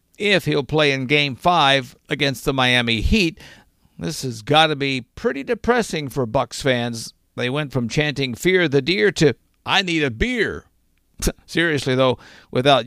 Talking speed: 165 wpm